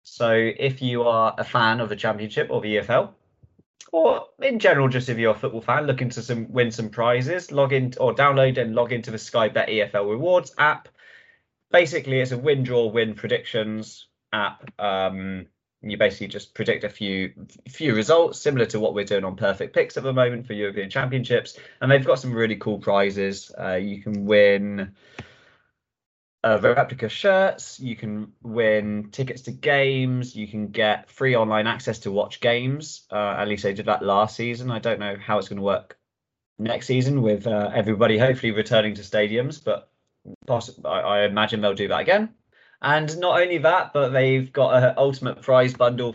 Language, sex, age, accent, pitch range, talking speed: English, male, 20-39, British, 105-130 Hz, 185 wpm